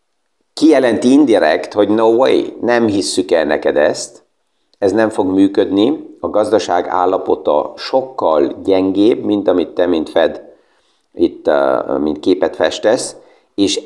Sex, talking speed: male, 125 wpm